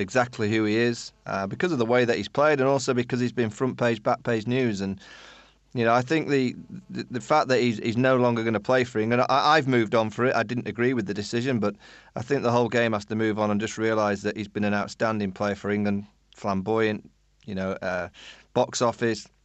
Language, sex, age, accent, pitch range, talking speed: English, male, 30-49, British, 105-120 Hz, 245 wpm